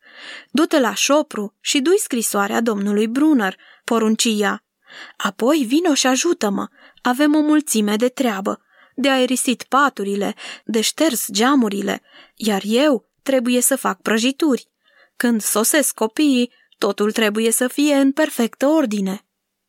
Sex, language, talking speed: female, Romanian, 120 wpm